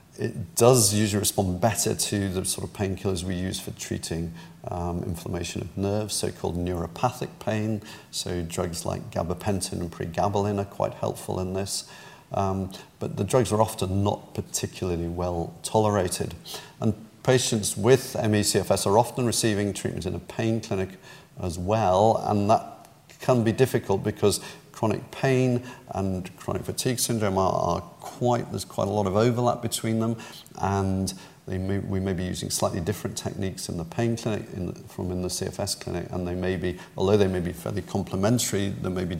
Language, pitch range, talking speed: English, 90-110 Hz, 165 wpm